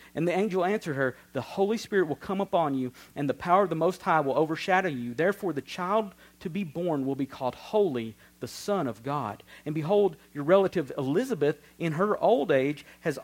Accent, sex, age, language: American, male, 50-69, English